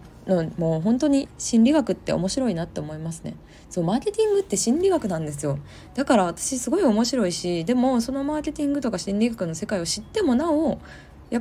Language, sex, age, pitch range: Japanese, female, 20-39, 145-230 Hz